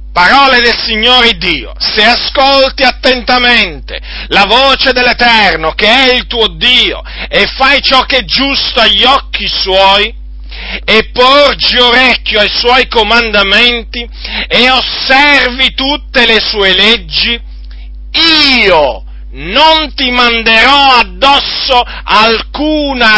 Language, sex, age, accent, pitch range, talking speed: Italian, male, 40-59, native, 215-270 Hz, 110 wpm